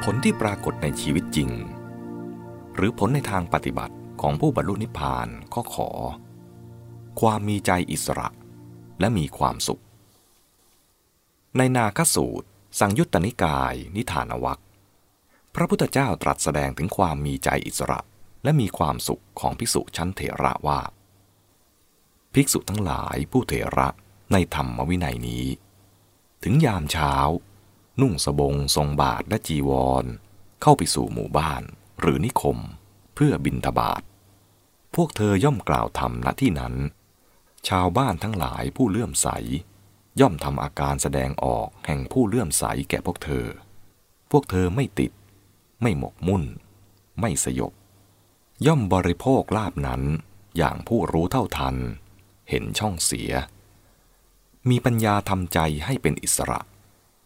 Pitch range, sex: 70-105 Hz, male